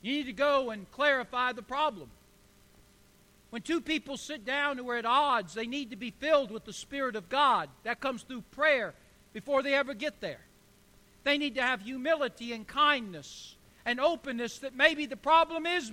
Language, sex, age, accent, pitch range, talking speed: English, male, 60-79, American, 260-320 Hz, 190 wpm